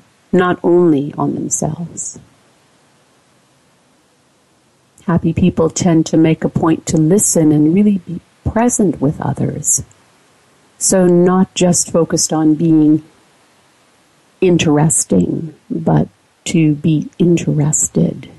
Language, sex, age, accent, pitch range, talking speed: English, female, 50-69, American, 155-175 Hz, 100 wpm